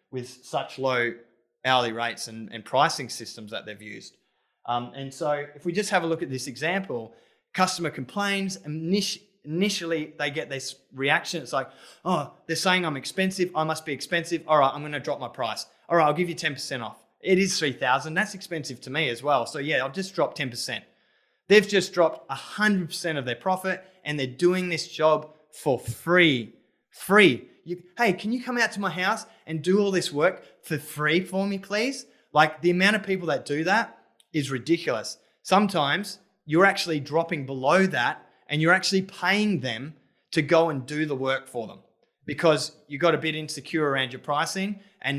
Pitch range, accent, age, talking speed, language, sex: 140-185 Hz, Australian, 20-39, 190 wpm, English, male